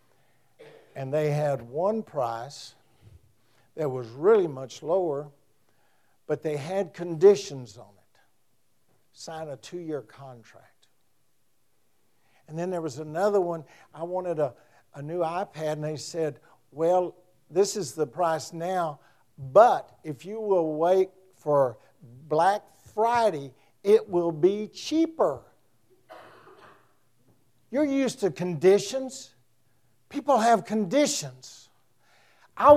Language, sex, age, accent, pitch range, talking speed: English, male, 60-79, American, 145-225 Hz, 110 wpm